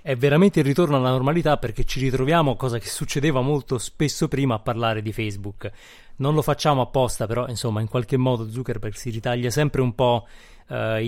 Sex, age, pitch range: male, 30-49, 110-130 Hz